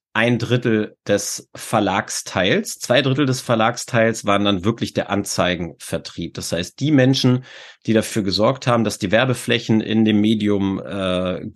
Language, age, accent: English, 30-49, German